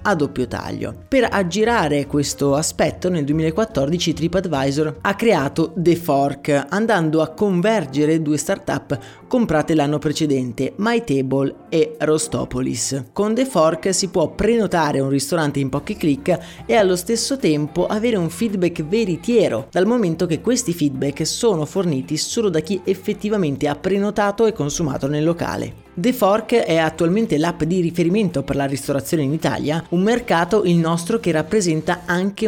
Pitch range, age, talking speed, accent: 145-195 Hz, 30-49, 150 wpm, native